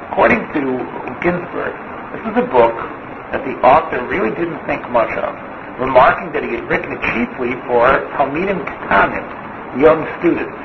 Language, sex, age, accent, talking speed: English, male, 60-79, American, 150 wpm